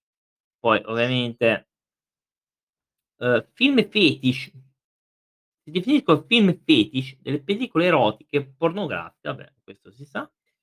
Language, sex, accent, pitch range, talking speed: Italian, male, native, 120-185 Hz, 90 wpm